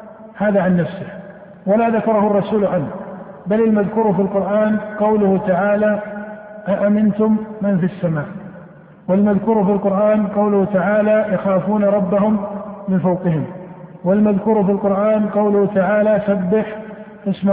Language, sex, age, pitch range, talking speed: Arabic, male, 50-69, 195-210 Hz, 115 wpm